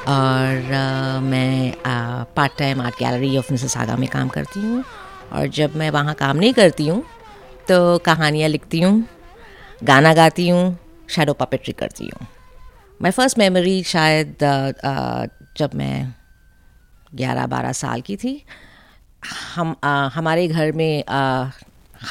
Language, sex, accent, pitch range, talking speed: Hindi, female, native, 130-165 Hz, 140 wpm